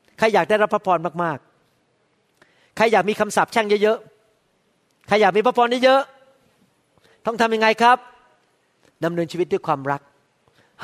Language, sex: Thai, male